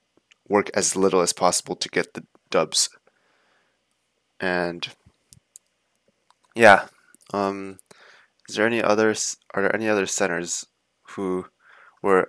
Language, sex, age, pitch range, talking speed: English, male, 20-39, 90-115 Hz, 110 wpm